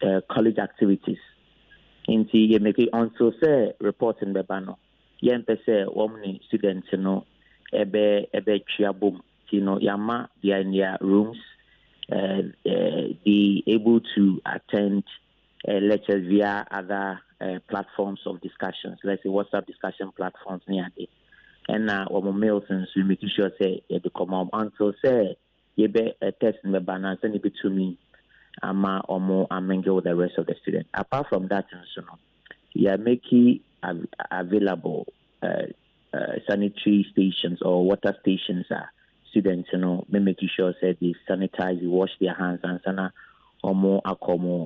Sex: male